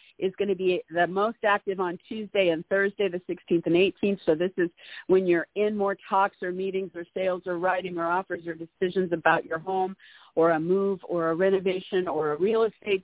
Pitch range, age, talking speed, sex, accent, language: 175-210 Hz, 50-69, 210 wpm, female, American, English